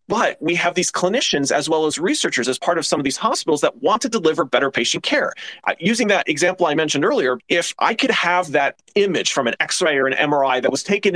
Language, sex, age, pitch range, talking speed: English, male, 30-49, 150-210 Hz, 240 wpm